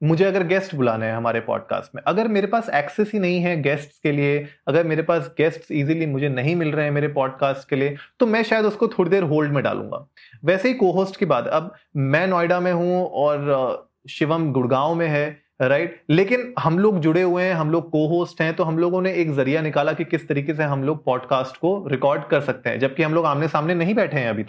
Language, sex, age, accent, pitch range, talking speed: Hindi, male, 30-49, native, 145-185 Hz, 235 wpm